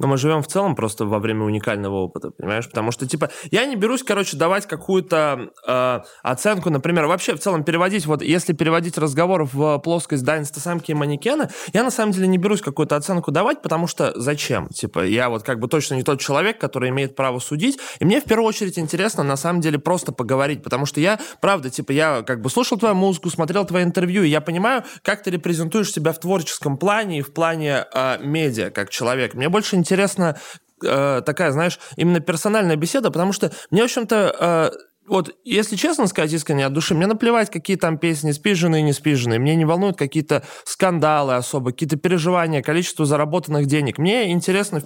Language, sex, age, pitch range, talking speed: Russian, male, 20-39, 135-185 Hz, 195 wpm